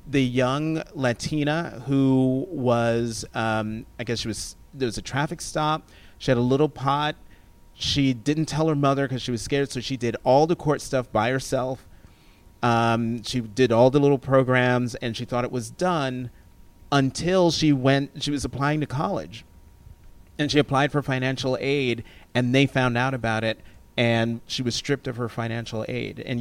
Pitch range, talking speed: 110-140 Hz, 180 wpm